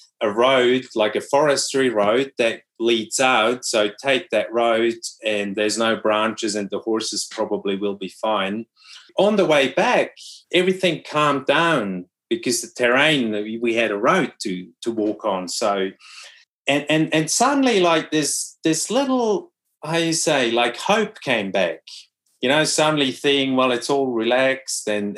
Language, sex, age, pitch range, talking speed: English, male, 30-49, 115-155 Hz, 160 wpm